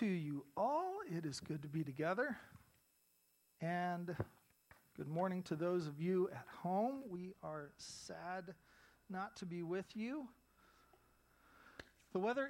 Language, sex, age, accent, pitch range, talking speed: English, male, 40-59, American, 145-190 Hz, 135 wpm